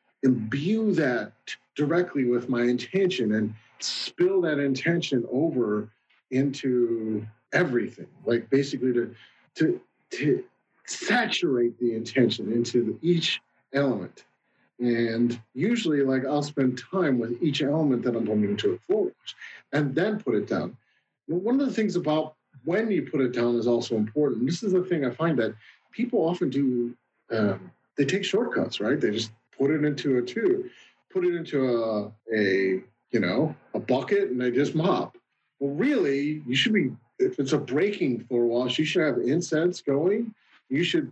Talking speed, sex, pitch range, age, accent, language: 160 wpm, male, 125-180 Hz, 40-59, American, English